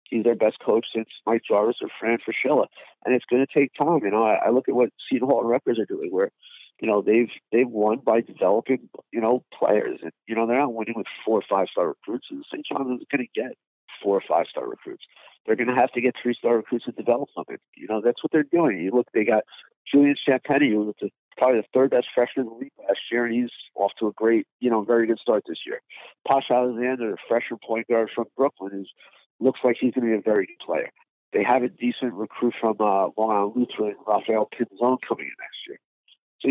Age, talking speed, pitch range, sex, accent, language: 50-69, 240 wpm, 115-140 Hz, male, American, English